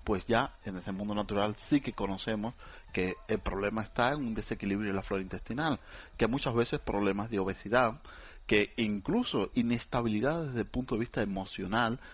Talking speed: 175 wpm